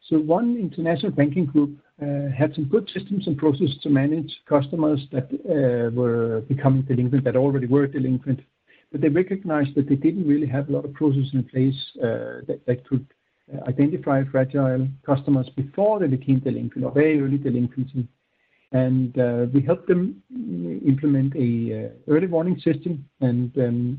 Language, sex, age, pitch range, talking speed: English, male, 60-79, 130-155 Hz, 165 wpm